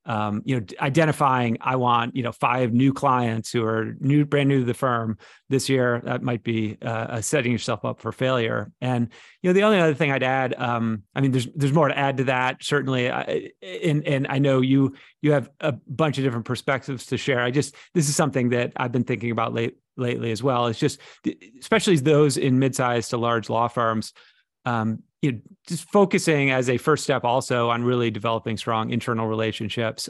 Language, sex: English, male